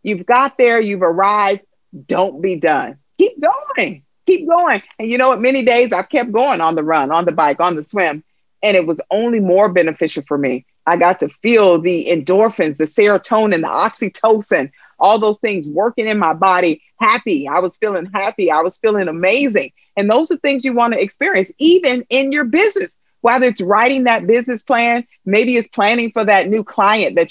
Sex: female